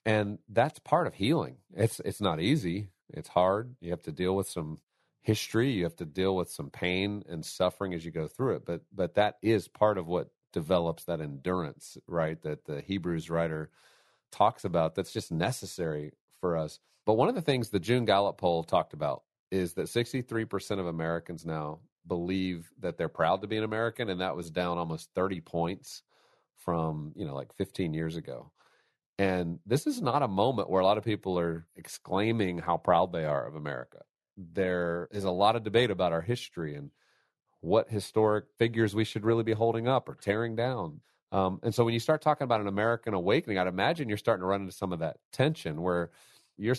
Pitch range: 85-105 Hz